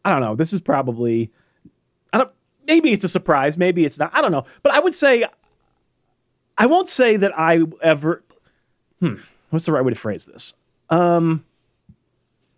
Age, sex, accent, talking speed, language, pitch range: 30-49, male, American, 175 wpm, English, 130-180 Hz